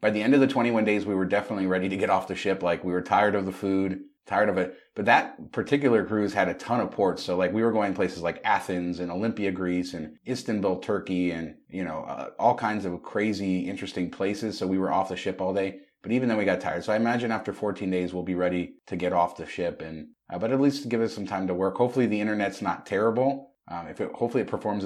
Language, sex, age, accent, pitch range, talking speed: English, male, 30-49, American, 90-105 Hz, 265 wpm